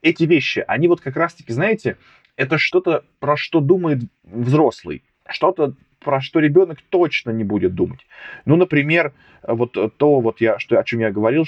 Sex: male